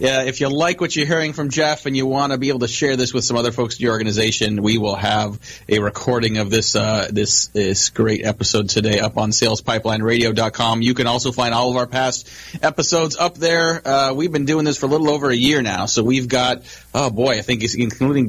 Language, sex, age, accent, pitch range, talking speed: English, male, 30-49, American, 110-130 Hz, 240 wpm